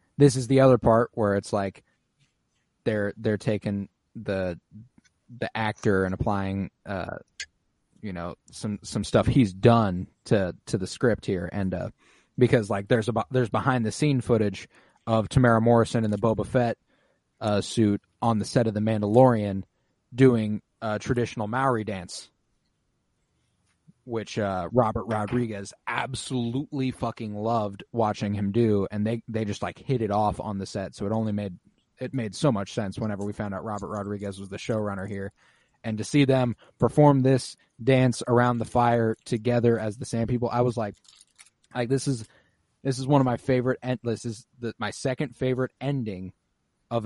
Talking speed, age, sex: 175 wpm, 20-39, male